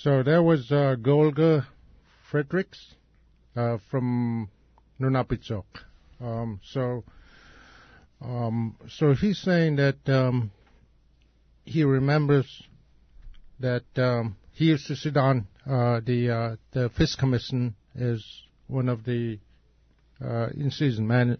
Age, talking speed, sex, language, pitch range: 60-79, 110 wpm, male, English, 105-135 Hz